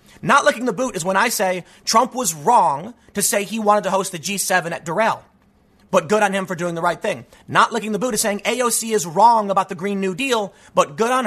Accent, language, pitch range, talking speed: American, English, 185-235 Hz, 250 wpm